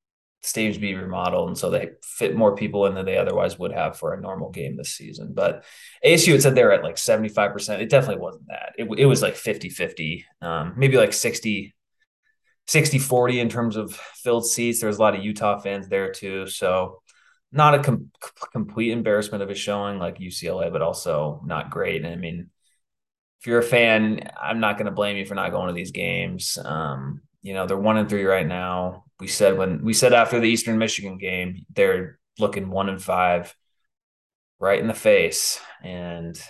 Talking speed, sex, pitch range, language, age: 200 wpm, male, 95-125 Hz, English, 20-39